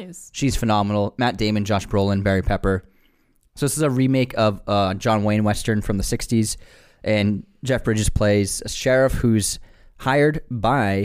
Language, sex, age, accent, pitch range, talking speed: English, male, 20-39, American, 95-120 Hz, 165 wpm